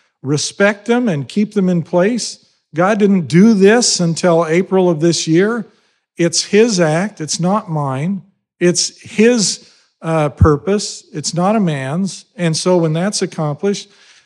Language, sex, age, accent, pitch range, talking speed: English, male, 50-69, American, 160-195 Hz, 145 wpm